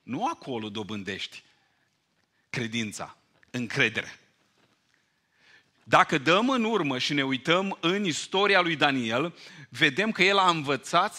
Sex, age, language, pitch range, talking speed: male, 40-59, Romanian, 115-165 Hz, 115 wpm